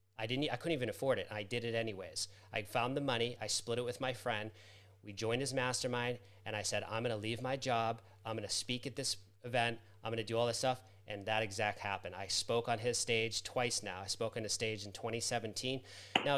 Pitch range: 100-125 Hz